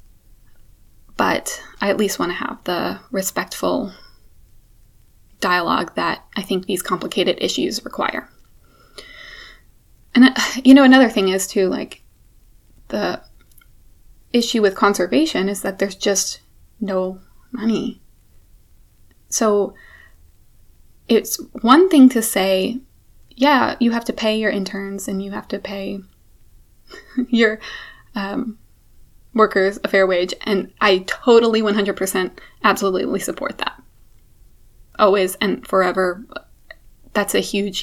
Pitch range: 185-230 Hz